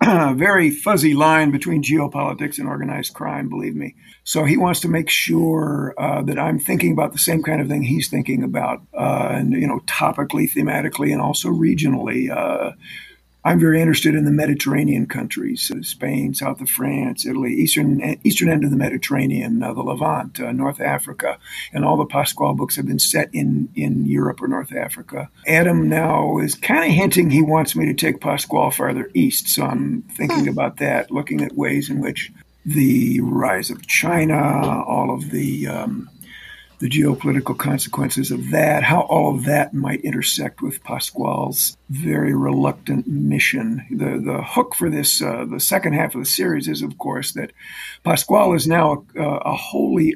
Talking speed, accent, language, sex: 175 wpm, American, English, male